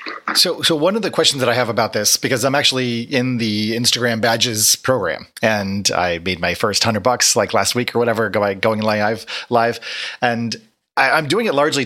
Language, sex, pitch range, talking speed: English, male, 110-125 Hz, 195 wpm